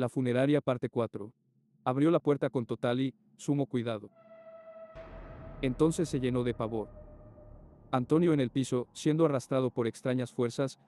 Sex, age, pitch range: male, 50-69, 120-145 Hz